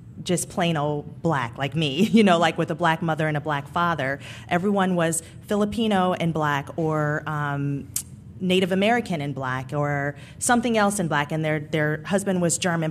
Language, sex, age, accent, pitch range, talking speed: English, female, 30-49, American, 155-205 Hz, 180 wpm